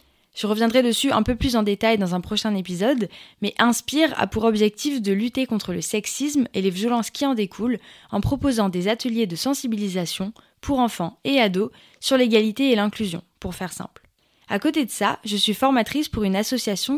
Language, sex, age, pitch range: French, female, 20-39, 195-245 Hz